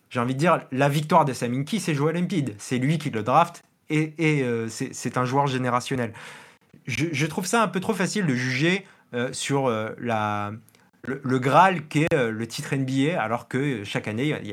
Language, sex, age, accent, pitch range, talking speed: French, male, 30-49, French, 120-160 Hz, 220 wpm